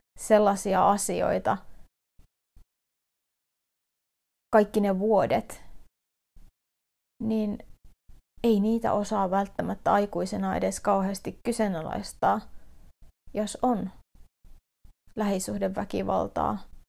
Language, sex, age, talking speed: Finnish, female, 30-49, 60 wpm